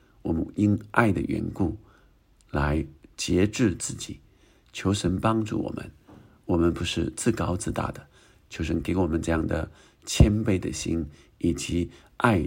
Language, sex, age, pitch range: Chinese, male, 50-69, 80-110 Hz